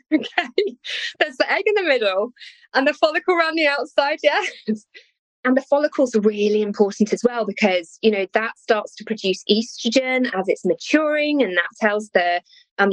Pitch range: 195-265 Hz